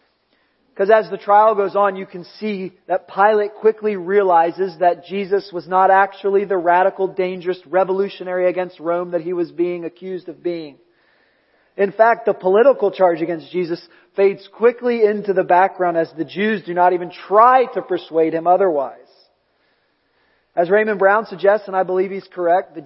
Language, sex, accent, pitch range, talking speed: English, male, American, 165-195 Hz, 170 wpm